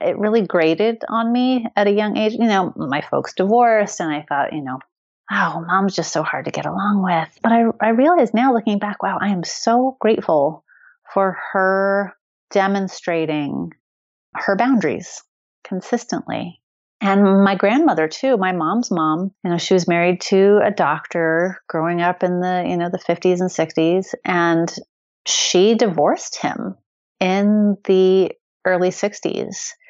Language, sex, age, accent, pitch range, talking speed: English, female, 30-49, American, 160-205 Hz, 160 wpm